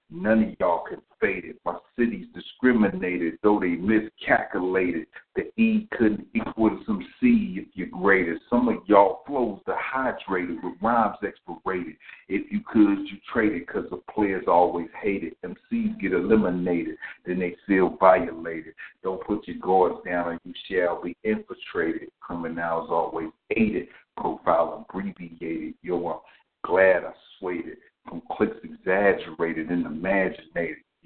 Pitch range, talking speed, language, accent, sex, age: 90-110 Hz, 140 wpm, English, American, male, 50-69